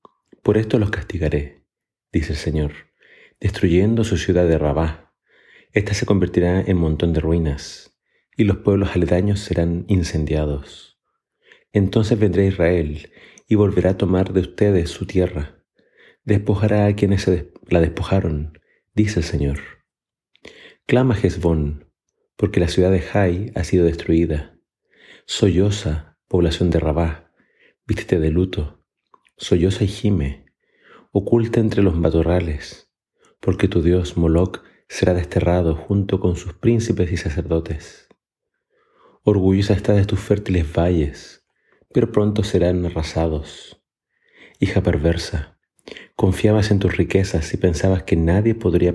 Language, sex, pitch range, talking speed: Spanish, male, 80-100 Hz, 125 wpm